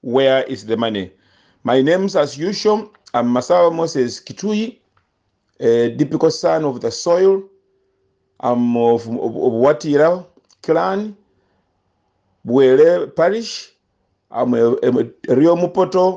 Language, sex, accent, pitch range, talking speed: English, male, Nigerian, 125-180 Hz, 115 wpm